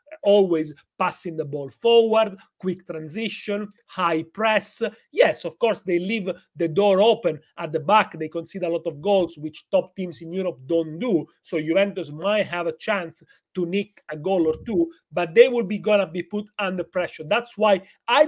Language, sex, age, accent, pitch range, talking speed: English, male, 40-59, Italian, 170-215 Hz, 190 wpm